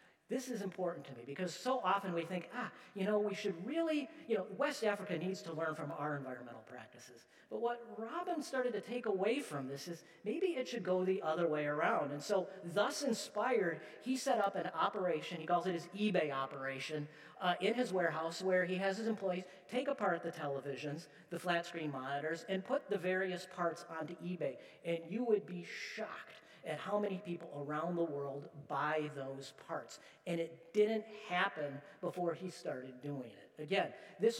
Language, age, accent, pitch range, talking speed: English, 40-59, American, 160-210 Hz, 190 wpm